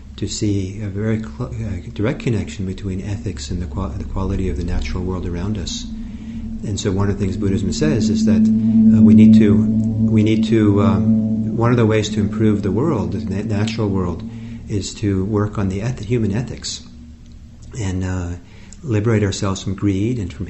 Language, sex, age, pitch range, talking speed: English, male, 50-69, 90-110 Hz, 185 wpm